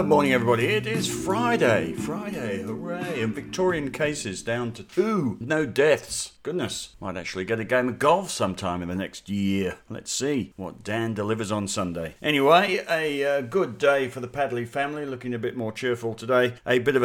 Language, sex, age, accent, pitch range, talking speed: English, male, 50-69, British, 100-125 Hz, 185 wpm